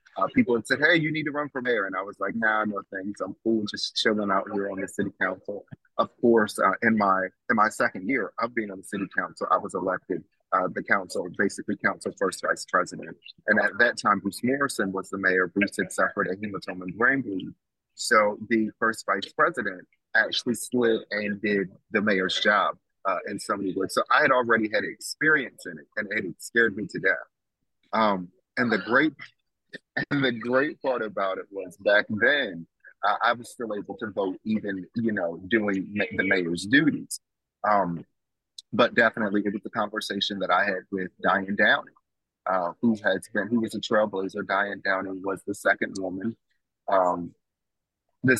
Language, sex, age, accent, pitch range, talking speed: English, male, 30-49, American, 95-115 Hz, 190 wpm